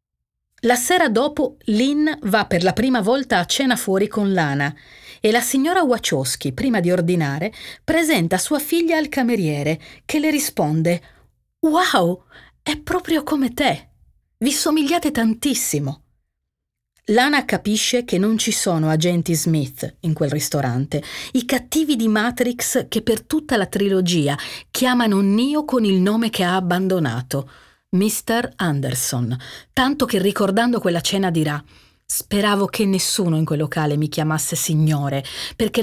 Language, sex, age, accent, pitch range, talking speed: Italian, female, 40-59, native, 155-235 Hz, 140 wpm